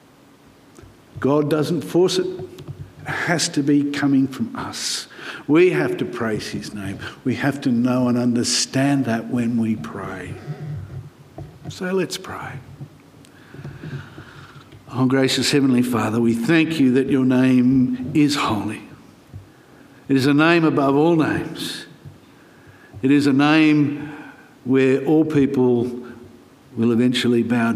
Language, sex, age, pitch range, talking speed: English, male, 60-79, 120-145 Hz, 130 wpm